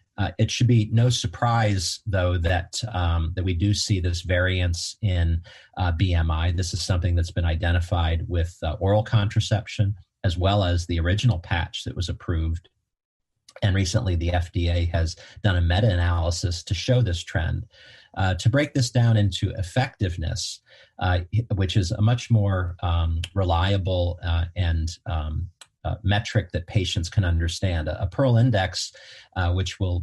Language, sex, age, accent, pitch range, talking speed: English, male, 40-59, American, 85-105 Hz, 160 wpm